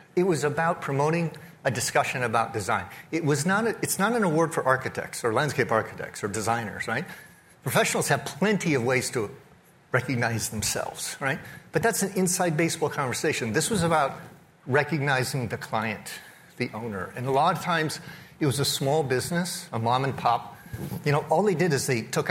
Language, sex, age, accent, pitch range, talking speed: English, male, 50-69, American, 135-175 Hz, 185 wpm